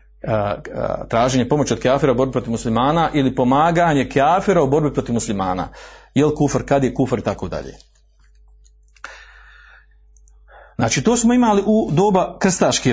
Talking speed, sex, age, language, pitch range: 135 wpm, male, 40-59, Croatian, 110-140 Hz